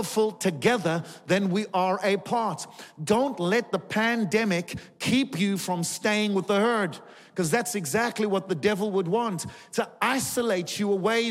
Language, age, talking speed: English, 40-59, 150 wpm